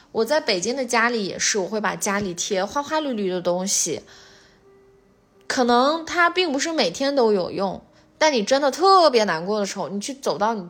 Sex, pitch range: female, 190-260 Hz